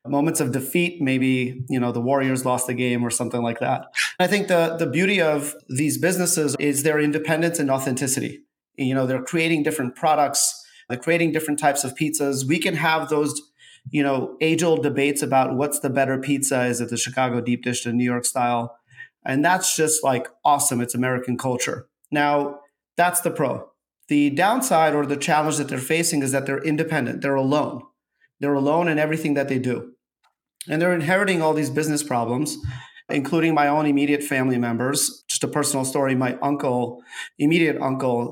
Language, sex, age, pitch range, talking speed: English, male, 30-49, 130-155 Hz, 185 wpm